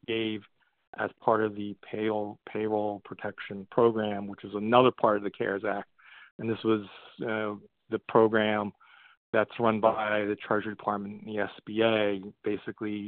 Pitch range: 100-110 Hz